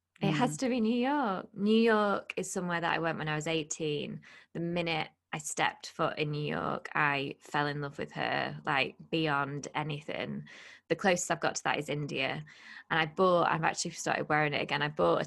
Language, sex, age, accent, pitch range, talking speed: English, female, 20-39, British, 155-195 Hz, 210 wpm